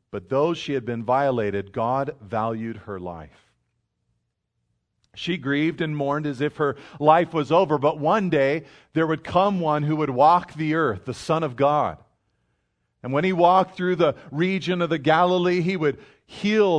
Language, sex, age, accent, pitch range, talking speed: English, male, 40-59, American, 130-175 Hz, 175 wpm